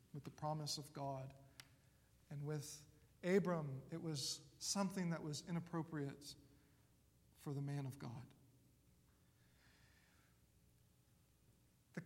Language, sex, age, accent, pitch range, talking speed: English, male, 40-59, American, 140-200 Hz, 100 wpm